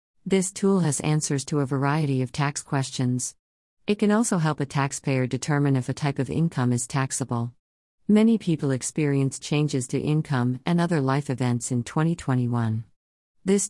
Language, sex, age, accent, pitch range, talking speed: English, female, 50-69, American, 130-155 Hz, 160 wpm